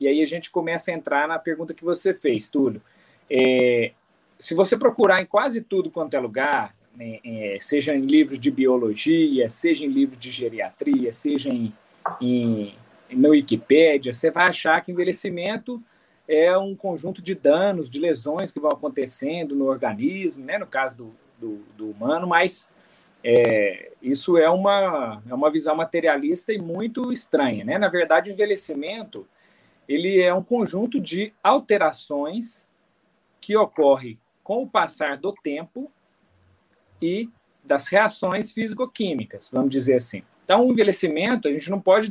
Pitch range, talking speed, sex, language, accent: 140-210 Hz, 140 wpm, male, Portuguese, Brazilian